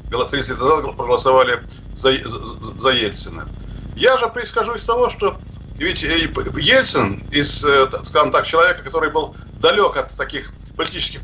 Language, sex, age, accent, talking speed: Russian, male, 50-69, native, 130 wpm